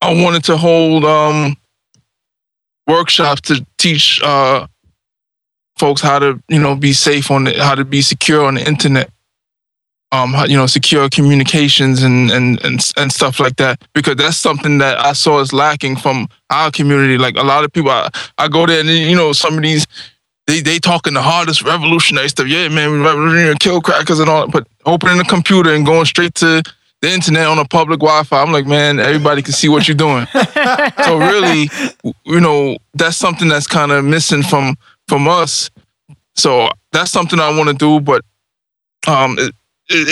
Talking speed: 185 wpm